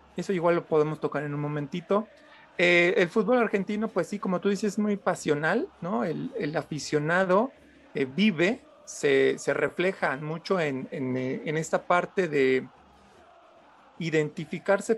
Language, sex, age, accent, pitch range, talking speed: Spanish, male, 40-59, Mexican, 145-200 Hz, 150 wpm